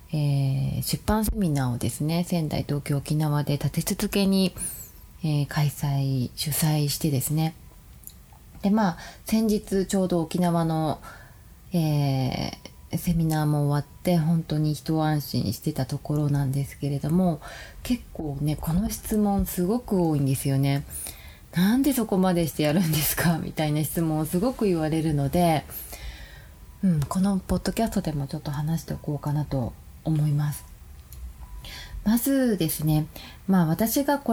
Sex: female